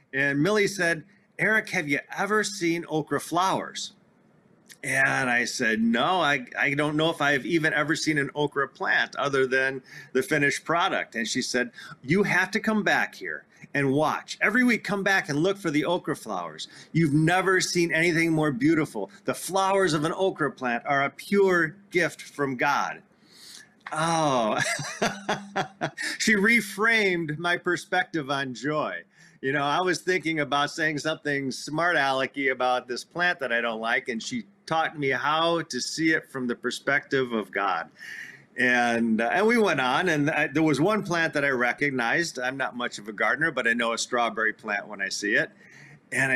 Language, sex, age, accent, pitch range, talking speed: English, male, 40-59, American, 135-180 Hz, 180 wpm